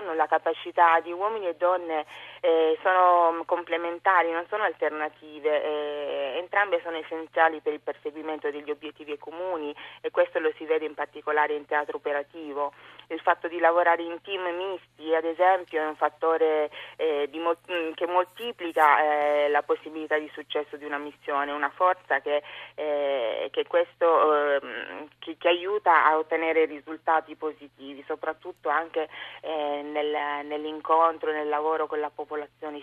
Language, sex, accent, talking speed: Italian, female, native, 150 wpm